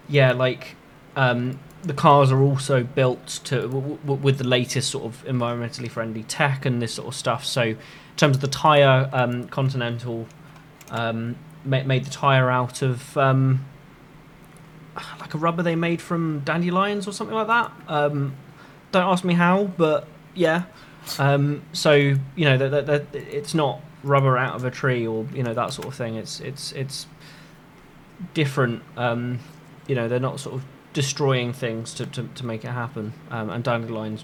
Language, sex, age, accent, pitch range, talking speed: English, male, 20-39, British, 125-155 Hz, 175 wpm